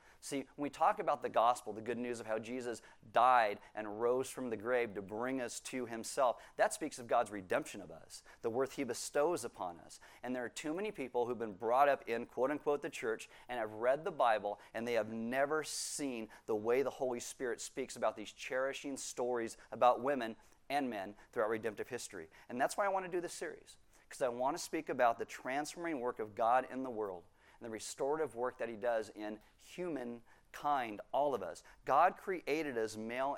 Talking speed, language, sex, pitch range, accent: 210 wpm, English, male, 115-145 Hz, American